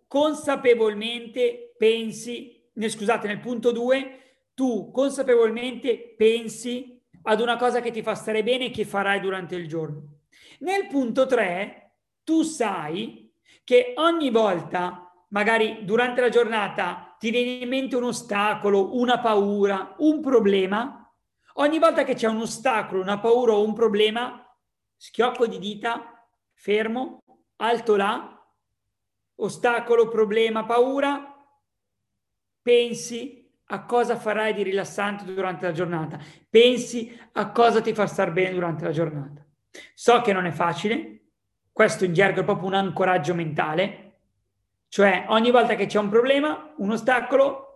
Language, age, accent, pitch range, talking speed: Italian, 40-59, native, 195-240 Hz, 135 wpm